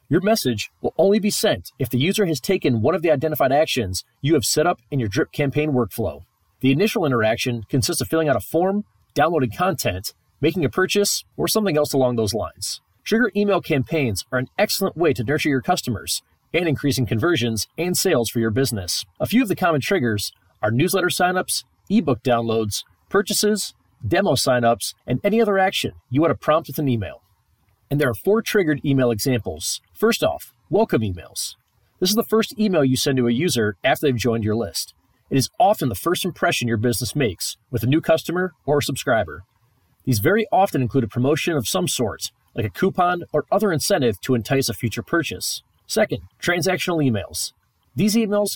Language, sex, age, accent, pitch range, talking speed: English, male, 30-49, American, 120-175 Hz, 195 wpm